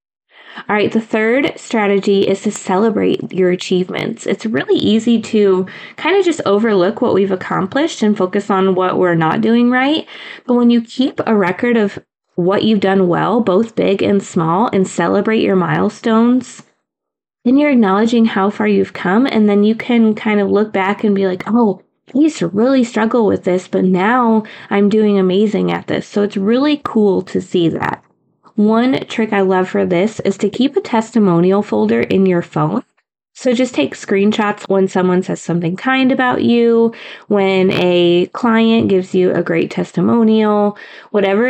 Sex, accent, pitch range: female, American, 185-230 Hz